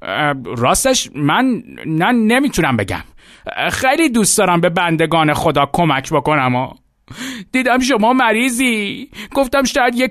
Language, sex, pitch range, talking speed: Persian, male, 150-255 Hz, 120 wpm